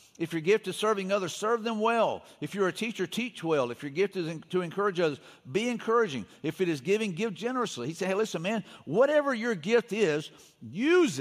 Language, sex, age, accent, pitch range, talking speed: English, male, 50-69, American, 165-220 Hz, 220 wpm